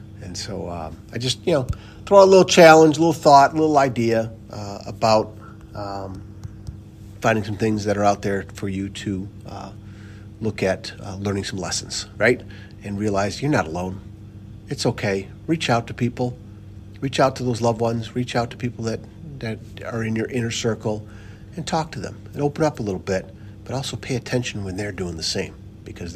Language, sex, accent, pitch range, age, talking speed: English, male, American, 100-115 Hz, 50-69, 195 wpm